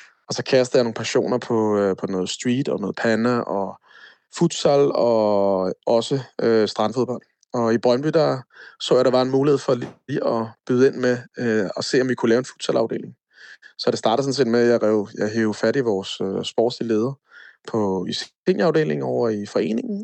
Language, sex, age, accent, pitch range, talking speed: Danish, male, 20-39, native, 115-135 Hz, 200 wpm